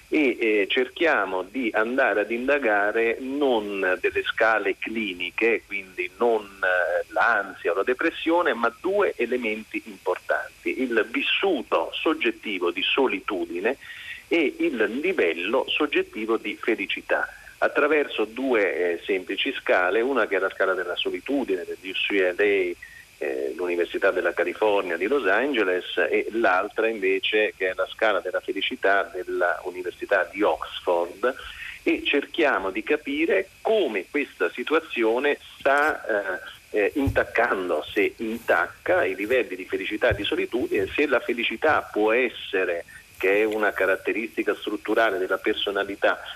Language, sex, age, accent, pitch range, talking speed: Italian, male, 40-59, native, 325-440 Hz, 125 wpm